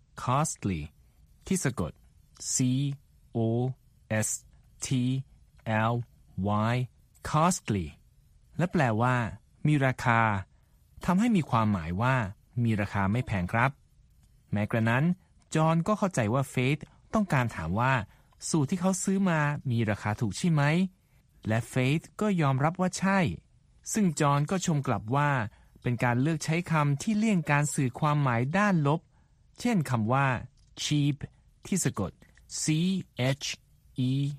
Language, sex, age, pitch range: Thai, male, 20-39, 115-155 Hz